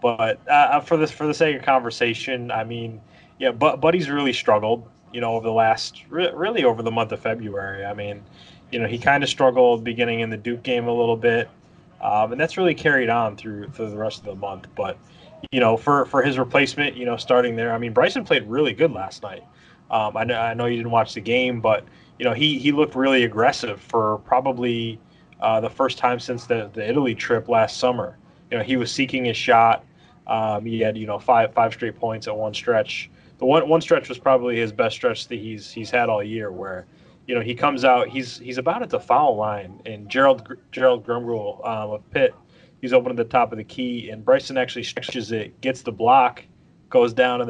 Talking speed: 225 wpm